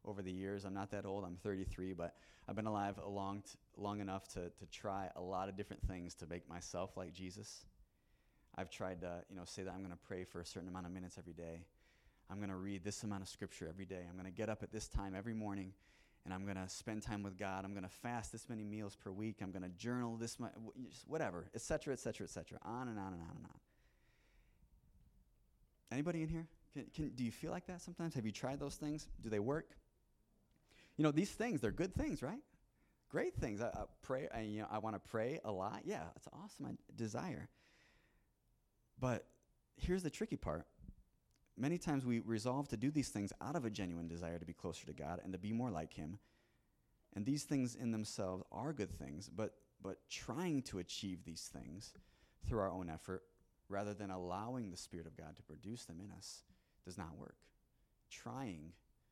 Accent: American